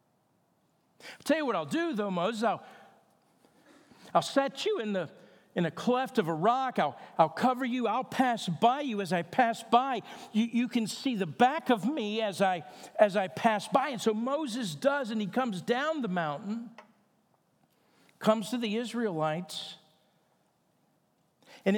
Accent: American